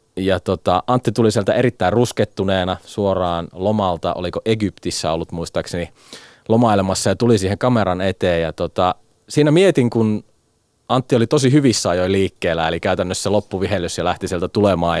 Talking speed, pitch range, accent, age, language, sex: 150 wpm, 90-110 Hz, native, 30-49, Finnish, male